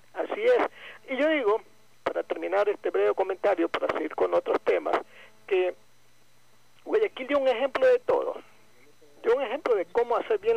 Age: 50-69